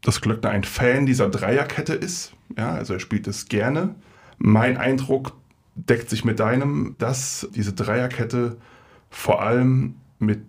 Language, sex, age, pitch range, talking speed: German, male, 30-49, 105-125 Hz, 145 wpm